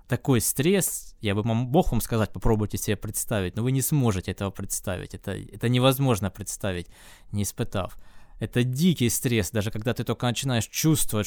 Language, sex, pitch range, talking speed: Russian, male, 100-125 Hz, 165 wpm